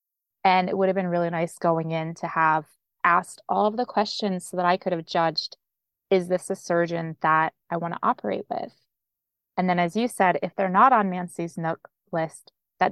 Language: English